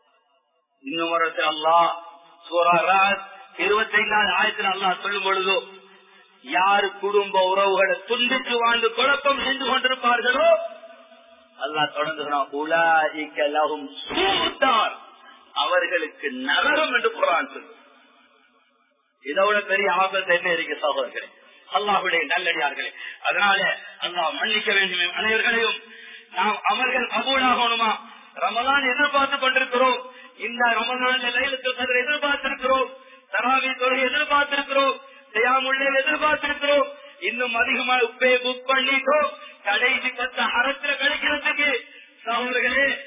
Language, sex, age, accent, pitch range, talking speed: English, male, 30-49, Indian, 205-275 Hz, 90 wpm